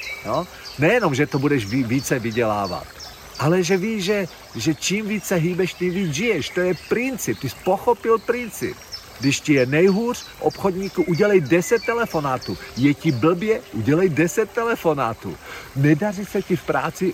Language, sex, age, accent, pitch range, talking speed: Czech, male, 50-69, native, 110-170 Hz, 160 wpm